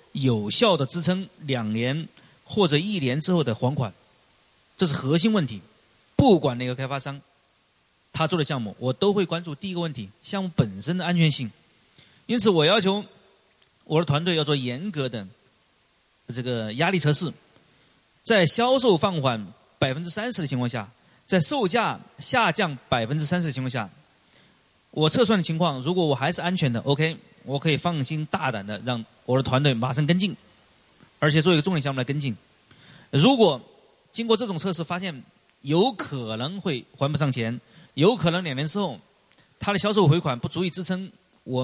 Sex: male